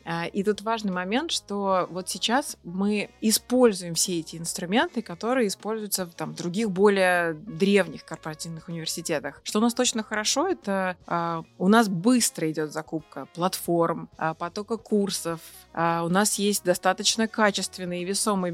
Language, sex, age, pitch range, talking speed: Russian, female, 20-39, 175-215 Hz, 145 wpm